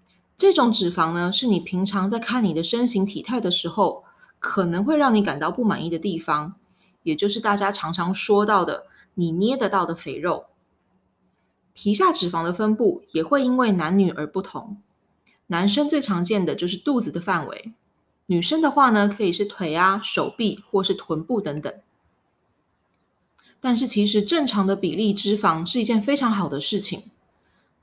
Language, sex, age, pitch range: Chinese, female, 20-39, 175-235 Hz